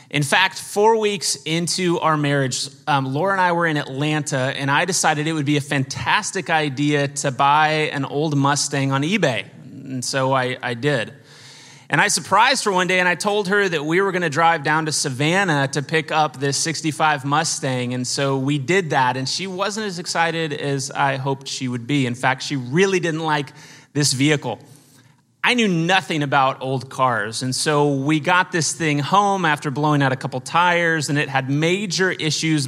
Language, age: English, 30-49